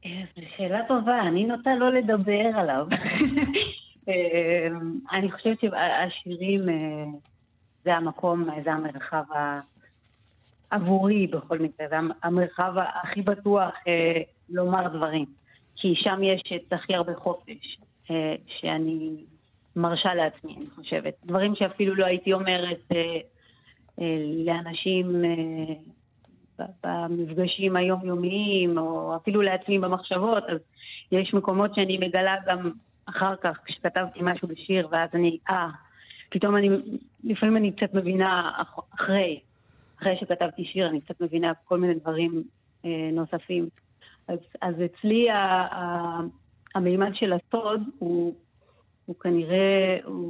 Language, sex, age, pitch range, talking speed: Hebrew, female, 30-49, 160-190 Hz, 105 wpm